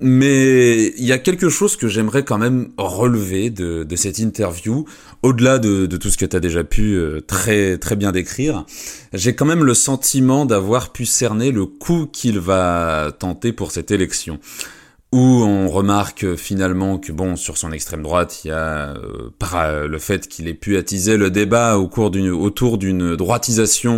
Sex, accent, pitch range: male, French, 95-120 Hz